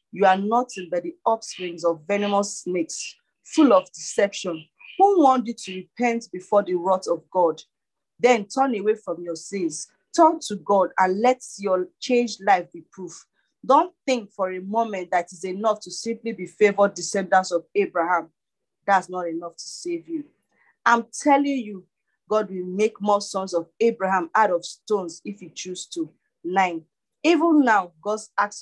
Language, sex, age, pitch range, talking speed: English, female, 40-59, 180-235 Hz, 170 wpm